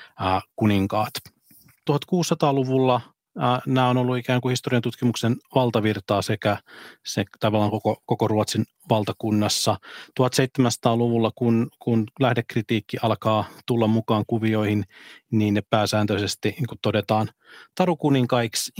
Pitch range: 105-125 Hz